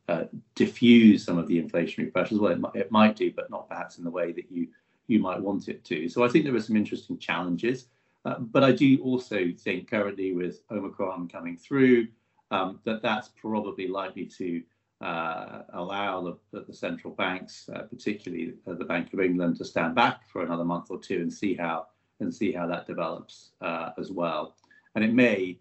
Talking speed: 200 wpm